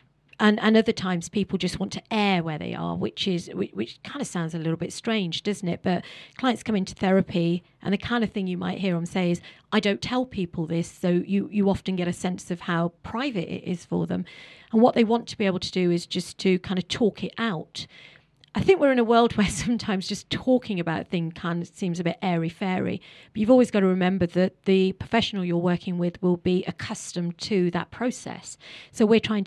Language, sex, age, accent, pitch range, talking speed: English, female, 40-59, British, 175-215 Hz, 235 wpm